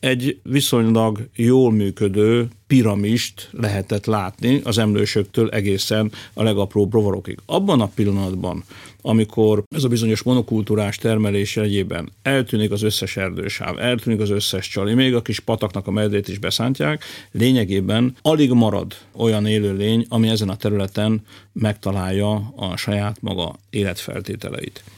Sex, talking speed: male, 125 wpm